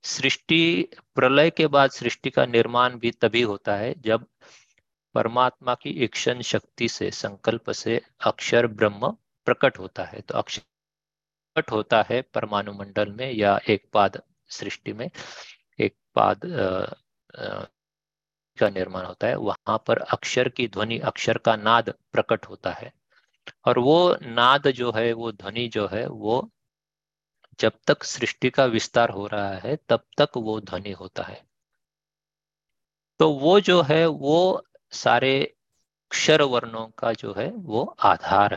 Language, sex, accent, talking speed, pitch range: Hindi, male, native, 140 wpm, 110-155 Hz